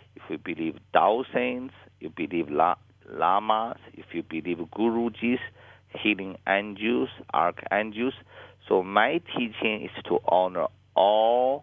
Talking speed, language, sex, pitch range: 120 wpm, English, male, 100-125 Hz